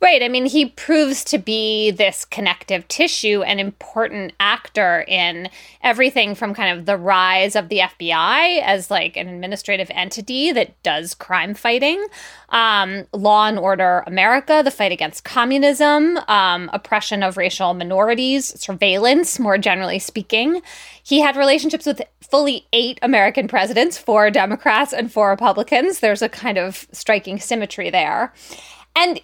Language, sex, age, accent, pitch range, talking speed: English, female, 20-39, American, 195-270 Hz, 145 wpm